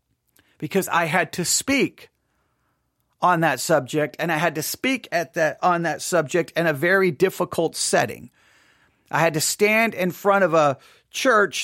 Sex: male